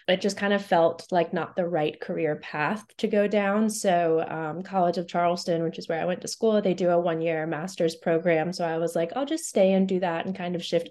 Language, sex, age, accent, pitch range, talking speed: English, female, 20-39, American, 170-195 Hz, 255 wpm